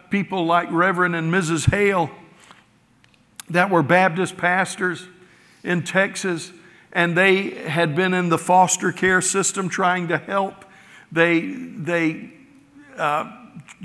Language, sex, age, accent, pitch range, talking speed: English, male, 60-79, American, 165-190 Hz, 115 wpm